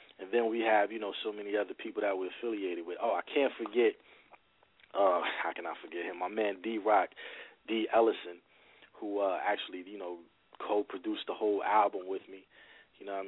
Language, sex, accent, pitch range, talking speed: English, male, American, 95-110 Hz, 200 wpm